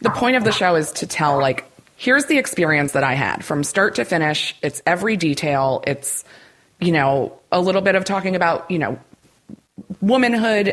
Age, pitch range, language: 30-49, 140-185 Hz, English